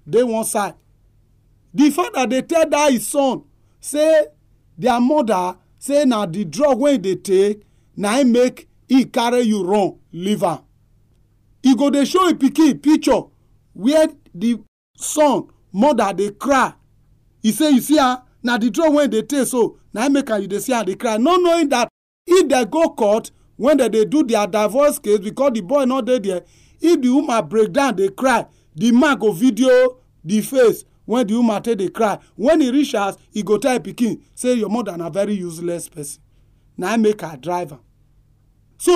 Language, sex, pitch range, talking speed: English, male, 185-275 Hz, 195 wpm